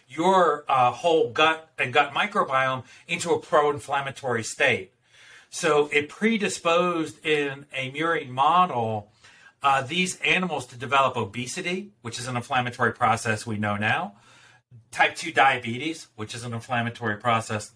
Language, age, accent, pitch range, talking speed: English, 40-59, American, 125-160 Hz, 135 wpm